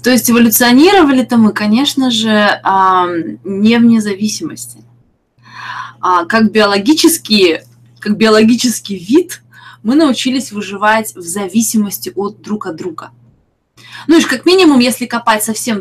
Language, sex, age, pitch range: Russian, female, 20-39, 185-245 Hz